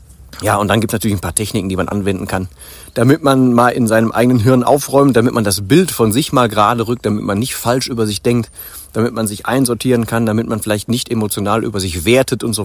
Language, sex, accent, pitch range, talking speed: German, male, German, 100-130 Hz, 245 wpm